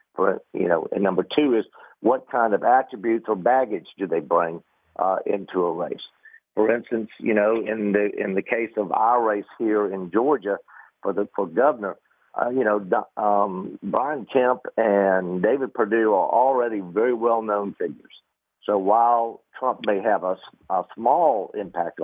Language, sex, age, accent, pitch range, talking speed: English, male, 50-69, American, 100-120 Hz, 170 wpm